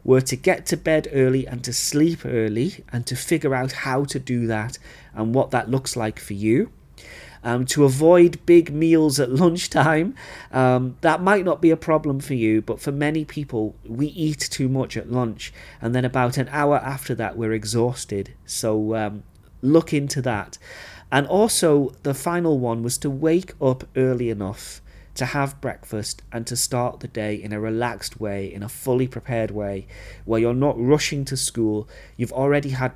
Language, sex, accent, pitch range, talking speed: English, male, British, 110-140 Hz, 185 wpm